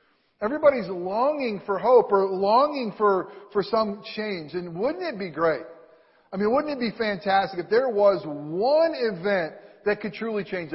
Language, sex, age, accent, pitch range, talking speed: English, male, 40-59, American, 165-210 Hz, 165 wpm